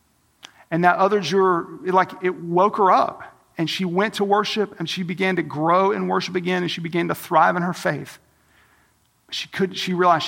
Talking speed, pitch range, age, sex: 205 wpm, 160-190 Hz, 40-59, male